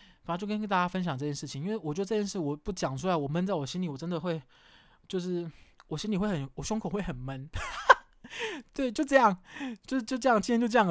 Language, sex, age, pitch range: Chinese, male, 20-39, 155-215 Hz